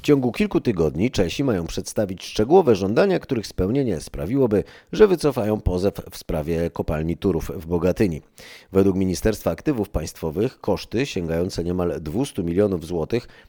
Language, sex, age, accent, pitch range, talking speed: Polish, male, 30-49, native, 85-110 Hz, 140 wpm